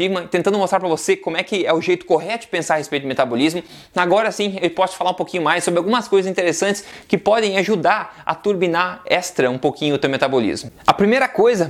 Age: 20-39